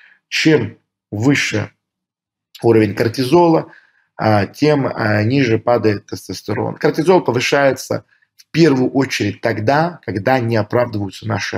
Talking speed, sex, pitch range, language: 95 wpm, male, 115-155 Hz, Russian